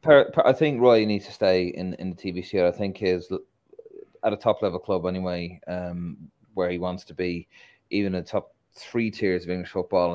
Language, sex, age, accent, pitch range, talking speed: English, male, 30-49, Irish, 90-130 Hz, 200 wpm